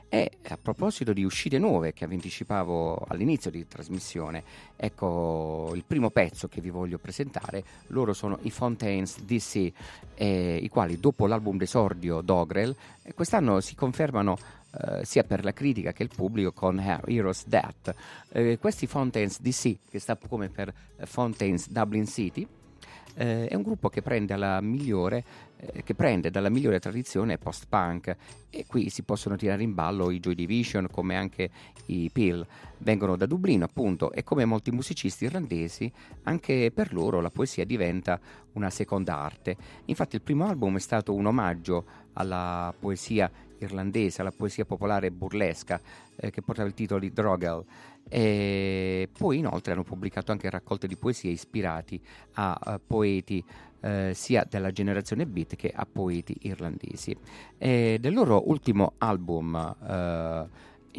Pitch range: 90-115 Hz